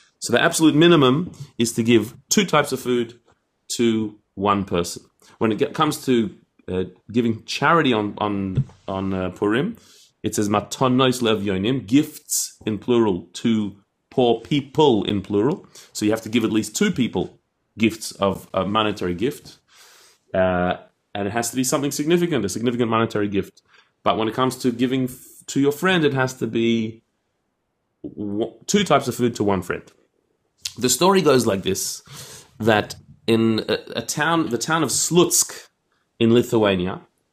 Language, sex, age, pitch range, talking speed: English, male, 30-49, 105-130 Hz, 160 wpm